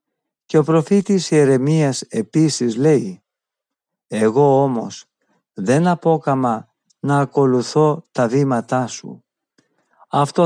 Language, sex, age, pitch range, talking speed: Greek, male, 50-69, 130-160 Hz, 90 wpm